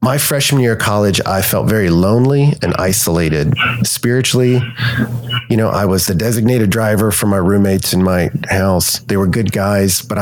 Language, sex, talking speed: English, male, 175 wpm